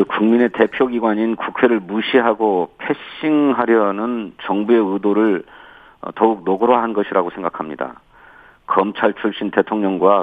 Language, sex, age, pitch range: Korean, male, 40-59, 100-130 Hz